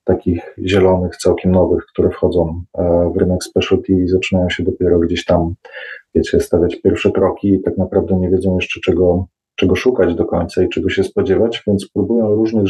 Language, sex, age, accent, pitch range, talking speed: Polish, male, 30-49, native, 95-105 Hz, 175 wpm